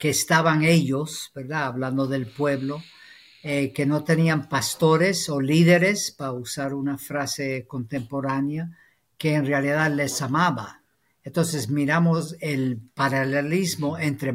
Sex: female